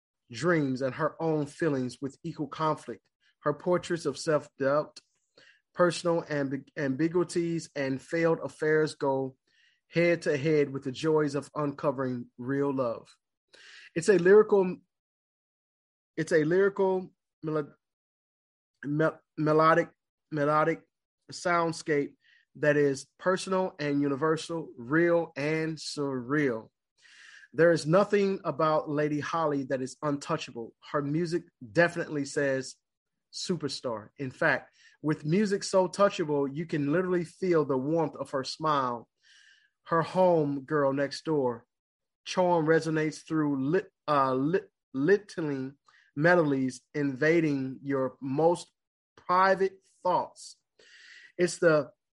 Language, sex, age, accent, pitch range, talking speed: English, male, 30-49, American, 140-170 Hz, 105 wpm